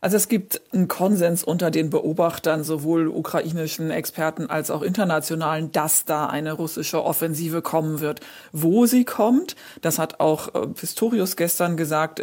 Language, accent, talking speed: German, German, 145 wpm